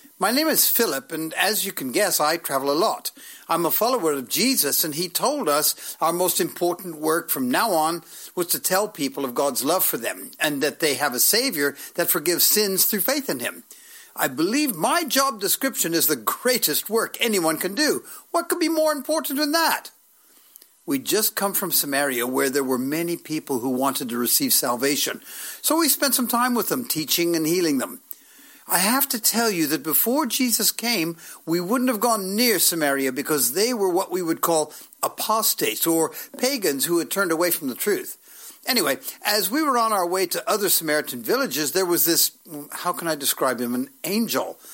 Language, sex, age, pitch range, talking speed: English, male, 60-79, 155-260 Hz, 200 wpm